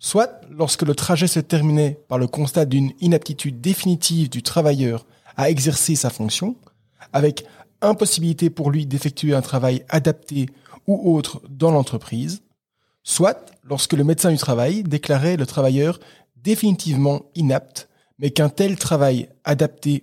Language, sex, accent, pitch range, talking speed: French, male, French, 135-170 Hz, 140 wpm